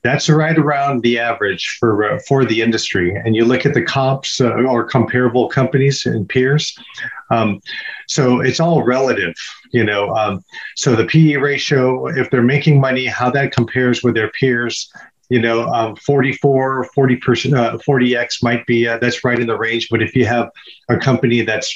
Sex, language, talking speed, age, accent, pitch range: male, English, 180 wpm, 40-59, American, 120-145 Hz